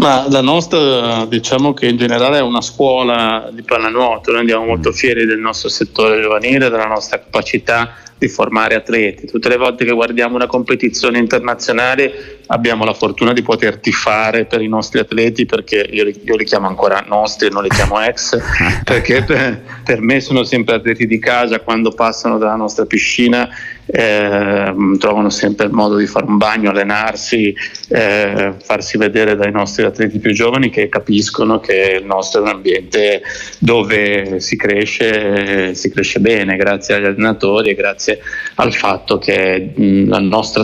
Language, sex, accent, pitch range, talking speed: Italian, male, native, 100-125 Hz, 165 wpm